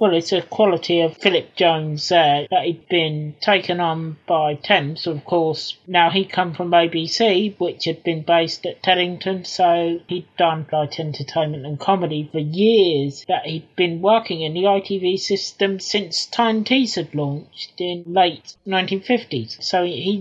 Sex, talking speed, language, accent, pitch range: male, 165 wpm, English, British, 160-200 Hz